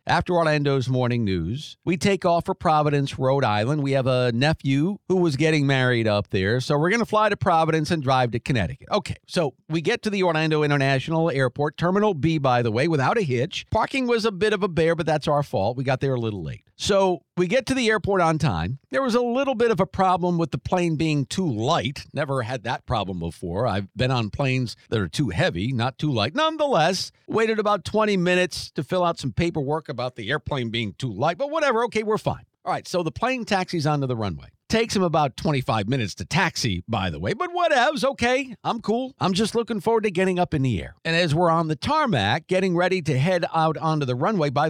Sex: male